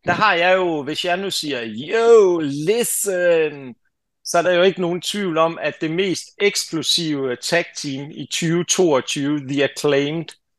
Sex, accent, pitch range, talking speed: male, native, 135-170 Hz, 155 wpm